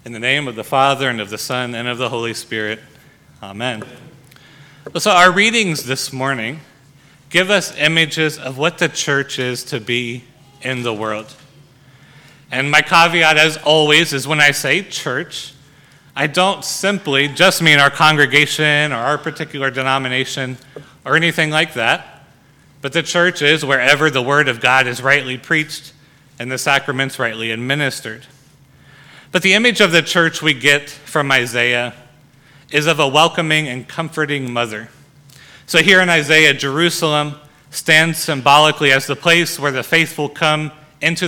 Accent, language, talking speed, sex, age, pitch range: American, English, 155 wpm, male, 30-49, 135-155 Hz